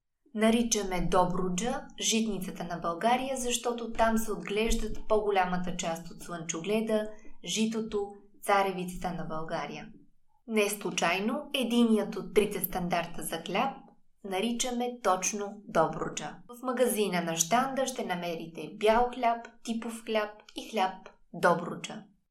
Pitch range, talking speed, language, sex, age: 185-240 Hz, 110 wpm, Bulgarian, female, 20-39